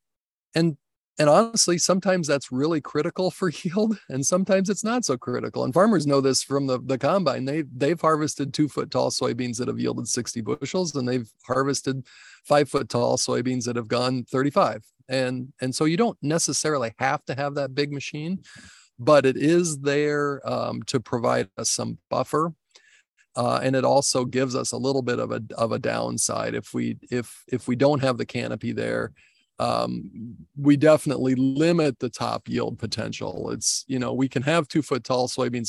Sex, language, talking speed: male, English, 185 wpm